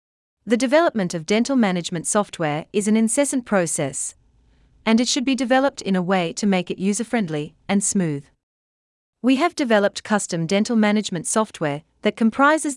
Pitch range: 160-235 Hz